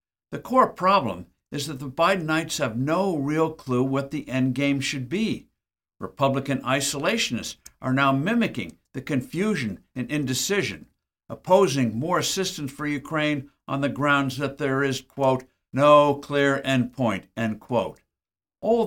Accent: American